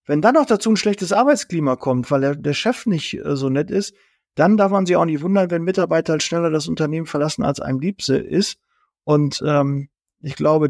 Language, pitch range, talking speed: German, 145-180 Hz, 210 wpm